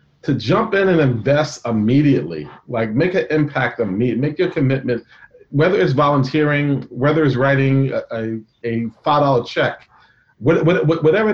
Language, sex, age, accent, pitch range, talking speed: English, male, 40-59, American, 125-155 Hz, 140 wpm